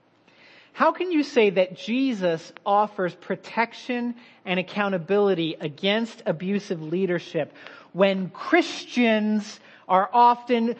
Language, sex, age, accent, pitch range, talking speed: English, male, 40-59, American, 175-235 Hz, 95 wpm